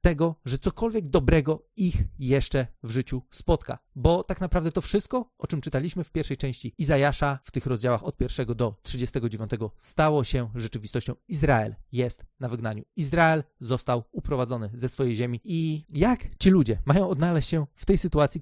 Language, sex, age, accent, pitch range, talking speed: Polish, male, 40-59, native, 125-170 Hz, 165 wpm